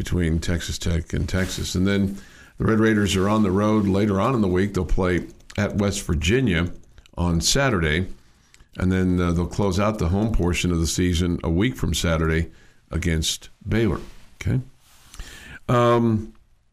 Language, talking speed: English, 165 wpm